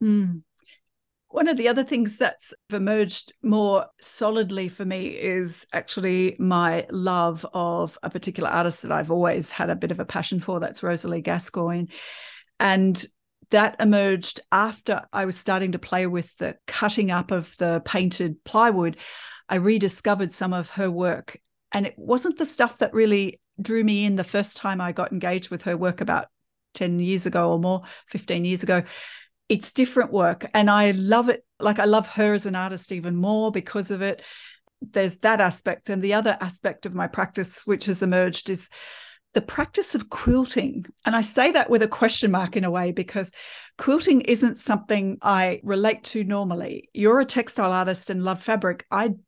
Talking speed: 180 wpm